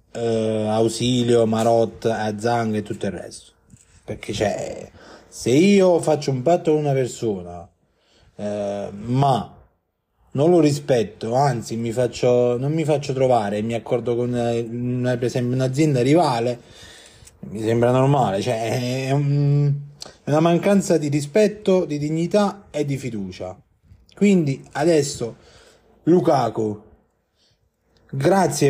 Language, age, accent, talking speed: Italian, 30-49, native, 125 wpm